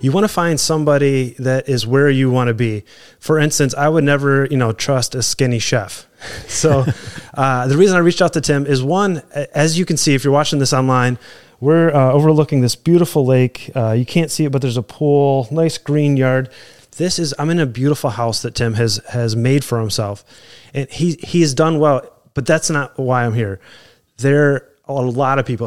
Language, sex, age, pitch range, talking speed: English, male, 30-49, 120-145 Hz, 215 wpm